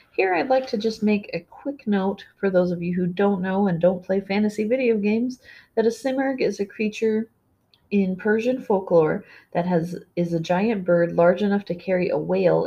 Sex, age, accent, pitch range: female, 30-49, American, 160-200 Hz